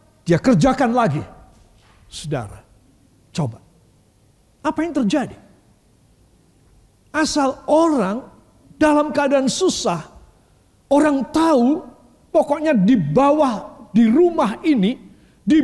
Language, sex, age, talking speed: Indonesian, male, 50-69, 85 wpm